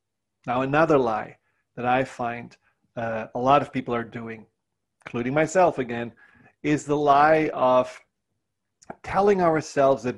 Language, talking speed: English, 135 wpm